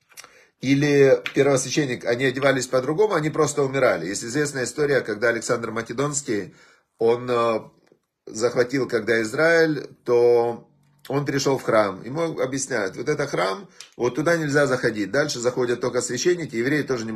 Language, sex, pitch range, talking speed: Russian, male, 120-155 Hz, 135 wpm